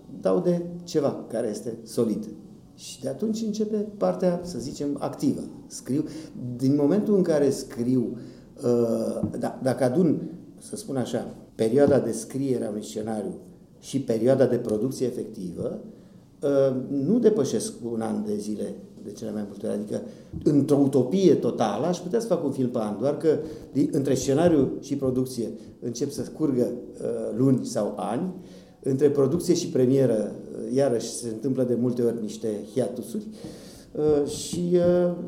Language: Romanian